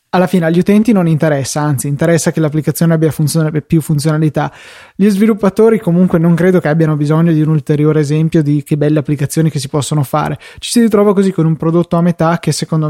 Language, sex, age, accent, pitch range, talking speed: Italian, male, 20-39, native, 150-180 Hz, 210 wpm